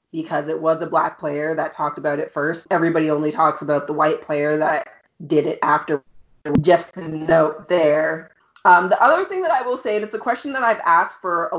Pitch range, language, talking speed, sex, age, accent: 155-190 Hz, English, 225 wpm, female, 30-49, American